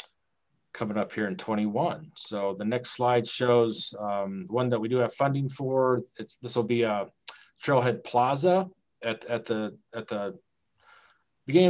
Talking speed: 160 wpm